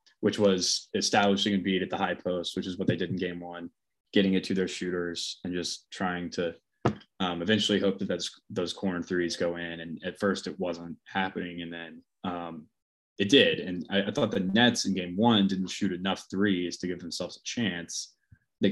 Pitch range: 90-105 Hz